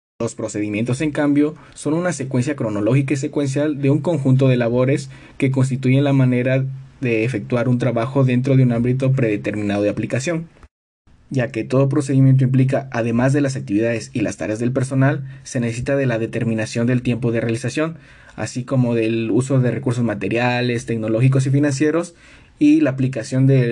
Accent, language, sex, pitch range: Mexican, Spanish, male, 115-135 Hz